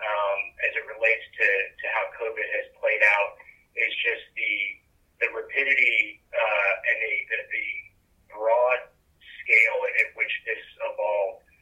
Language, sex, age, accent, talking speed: English, male, 30-49, American, 140 wpm